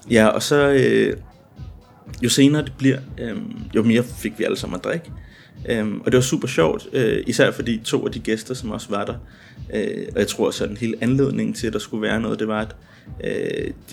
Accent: native